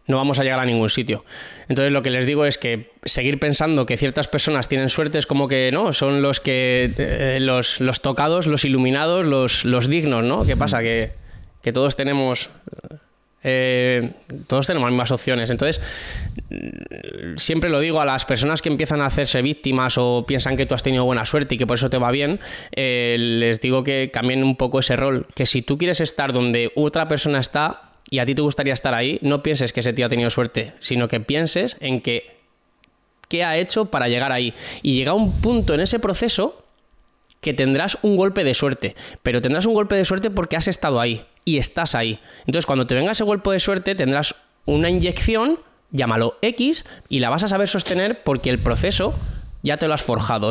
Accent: Spanish